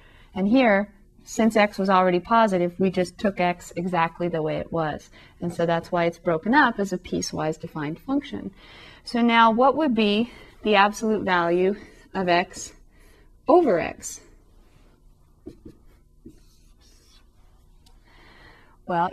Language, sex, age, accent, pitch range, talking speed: English, female, 30-49, American, 170-210 Hz, 130 wpm